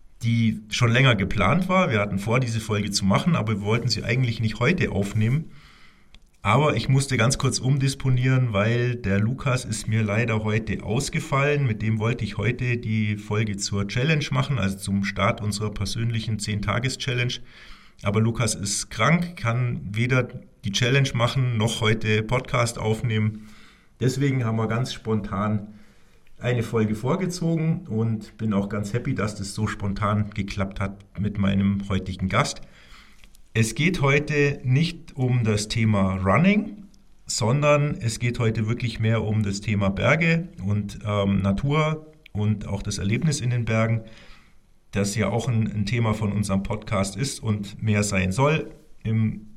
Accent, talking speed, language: German, 155 wpm, German